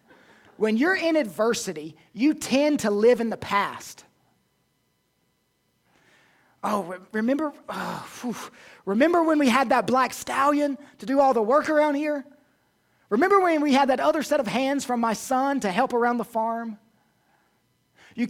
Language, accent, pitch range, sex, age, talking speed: English, American, 190-270 Hz, male, 30-49, 150 wpm